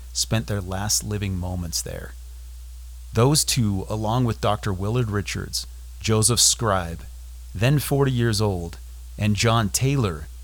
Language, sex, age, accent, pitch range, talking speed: English, male, 30-49, American, 75-115 Hz, 125 wpm